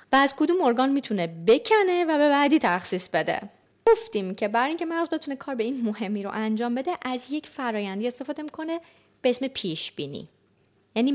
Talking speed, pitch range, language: 180 wpm, 210-285 Hz, Persian